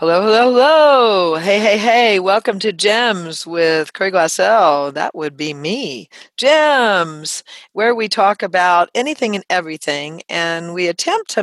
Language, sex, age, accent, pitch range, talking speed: English, female, 40-59, American, 155-215 Hz, 145 wpm